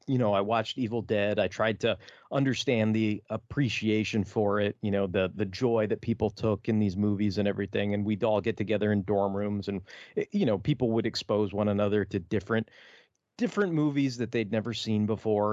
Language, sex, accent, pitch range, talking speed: English, male, American, 105-125 Hz, 200 wpm